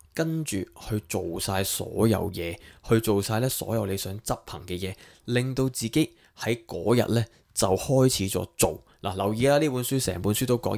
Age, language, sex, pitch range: 20-39, Chinese, male, 100-125 Hz